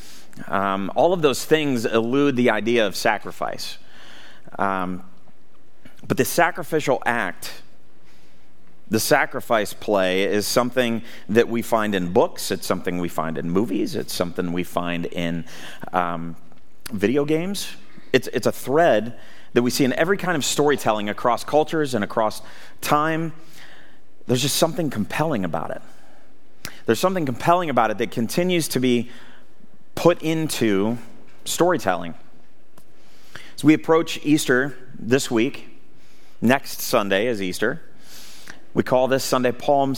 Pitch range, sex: 100-145 Hz, male